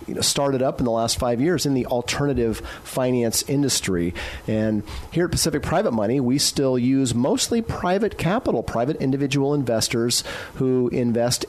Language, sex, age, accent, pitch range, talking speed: English, male, 40-59, American, 110-140 Hz, 150 wpm